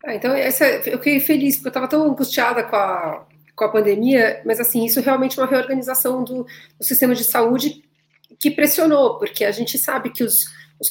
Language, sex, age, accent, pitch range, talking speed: Portuguese, female, 40-59, Brazilian, 200-265 Hz, 200 wpm